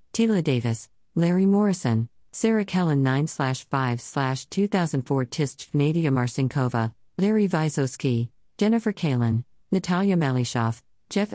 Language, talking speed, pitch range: English, 90 wpm, 130-175 Hz